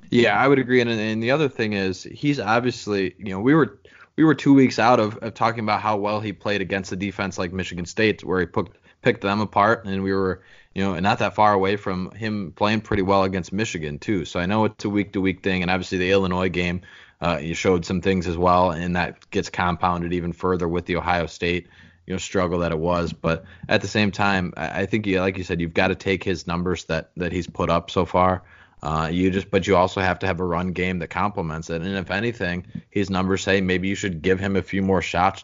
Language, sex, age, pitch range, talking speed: English, male, 20-39, 90-100 Hz, 250 wpm